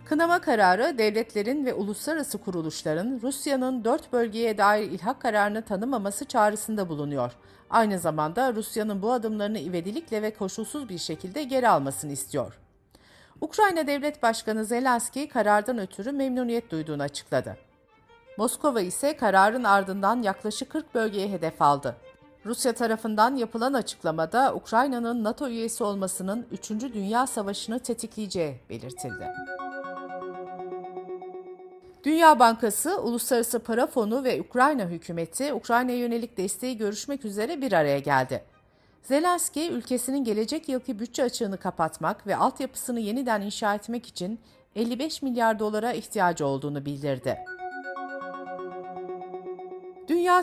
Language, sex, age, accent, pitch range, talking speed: Turkish, female, 50-69, native, 190-260 Hz, 115 wpm